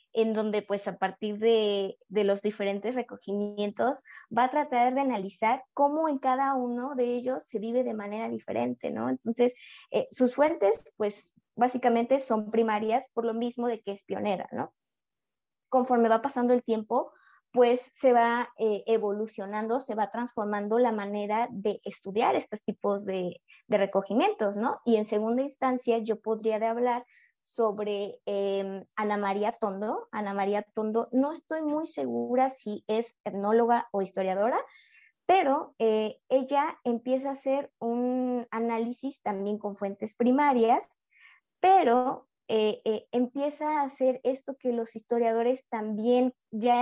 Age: 20-39